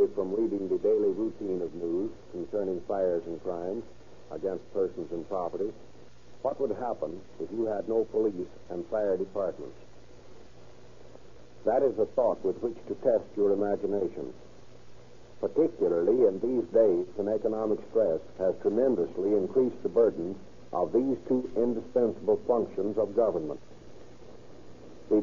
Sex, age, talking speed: male, 60-79, 135 wpm